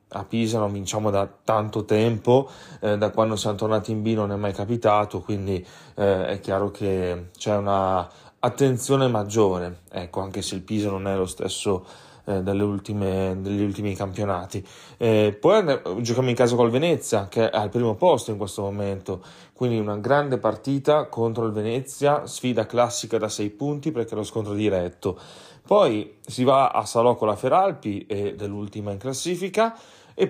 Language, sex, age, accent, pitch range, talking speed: Italian, male, 30-49, native, 105-125 Hz, 175 wpm